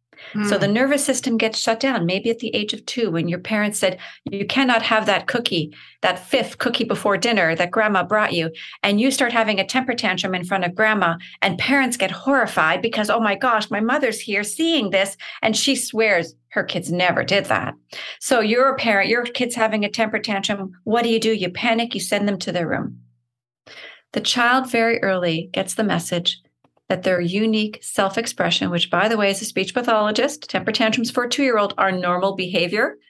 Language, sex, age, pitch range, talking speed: English, female, 40-59, 180-225 Hz, 205 wpm